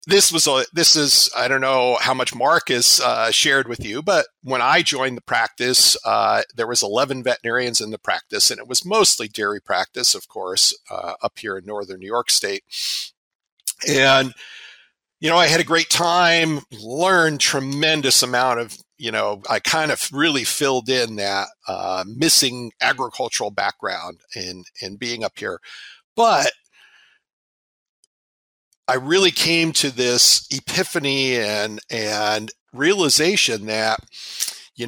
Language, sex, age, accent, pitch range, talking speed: English, male, 50-69, American, 110-165 Hz, 150 wpm